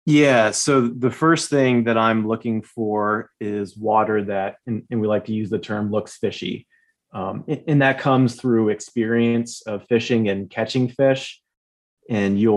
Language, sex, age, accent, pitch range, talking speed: English, male, 30-49, American, 105-115 Hz, 165 wpm